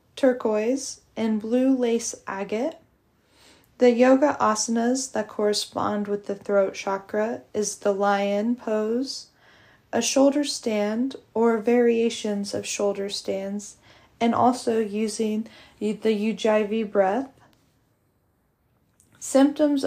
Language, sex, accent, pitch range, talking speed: English, female, American, 210-245 Hz, 100 wpm